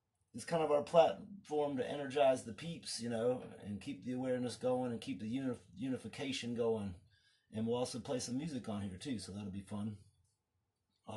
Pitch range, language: 110-140 Hz, English